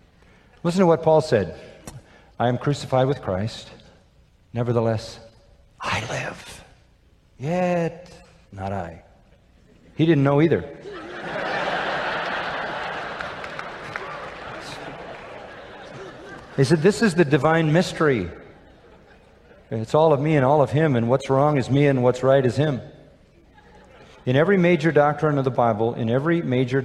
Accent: American